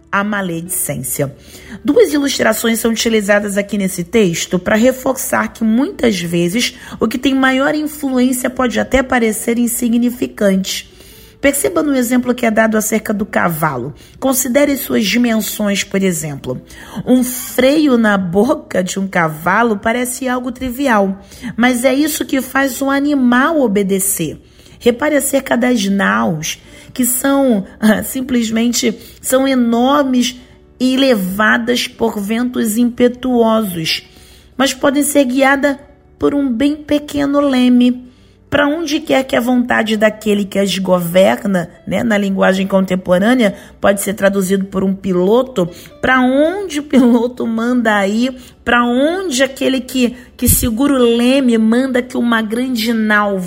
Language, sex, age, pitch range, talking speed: Portuguese, female, 40-59, 200-260 Hz, 130 wpm